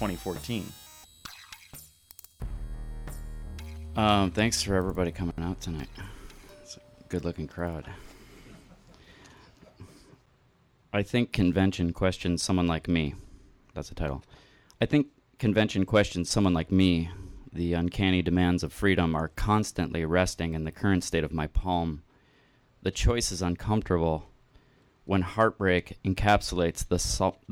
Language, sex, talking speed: English, male, 115 wpm